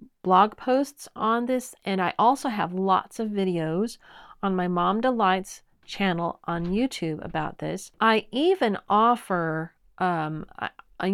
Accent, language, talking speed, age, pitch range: American, English, 130 wpm, 40-59, 170-235 Hz